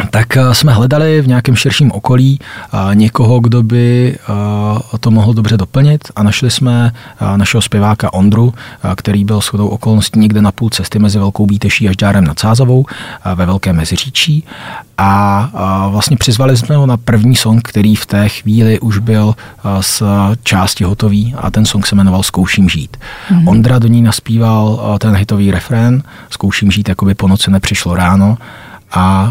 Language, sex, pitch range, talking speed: Czech, male, 100-120 Hz, 160 wpm